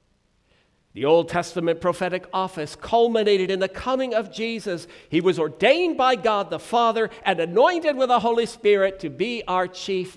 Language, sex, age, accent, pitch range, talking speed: English, male, 60-79, American, 155-255 Hz, 165 wpm